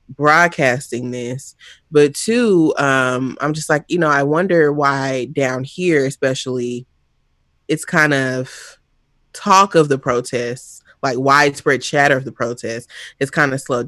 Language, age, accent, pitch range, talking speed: English, 20-39, American, 125-155 Hz, 145 wpm